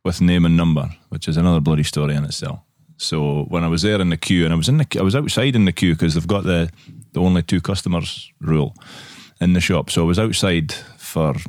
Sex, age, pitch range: male, 20-39, 85-110 Hz